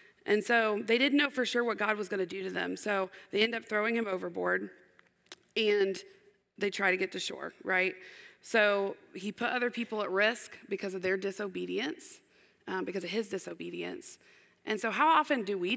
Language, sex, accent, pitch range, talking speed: English, female, American, 185-215 Hz, 200 wpm